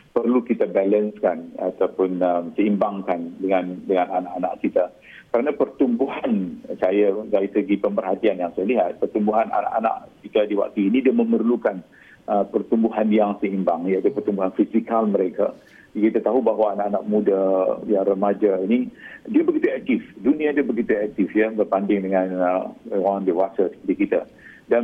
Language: Malay